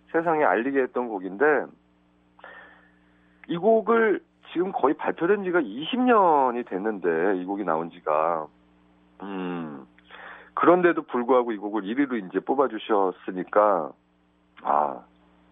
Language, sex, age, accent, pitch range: Korean, male, 40-59, native, 90-150 Hz